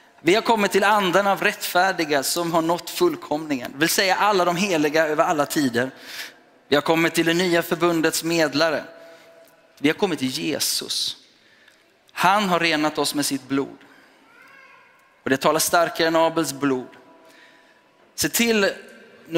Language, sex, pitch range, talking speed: Swedish, male, 145-180 Hz, 155 wpm